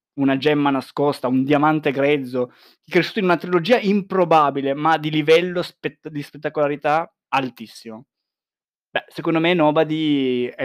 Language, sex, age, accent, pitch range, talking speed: Italian, male, 20-39, native, 125-160 Hz, 135 wpm